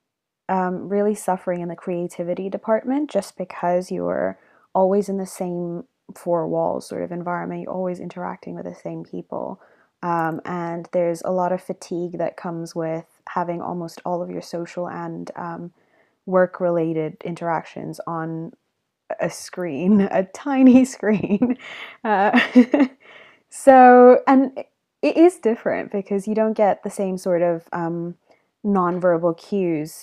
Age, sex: 20-39, female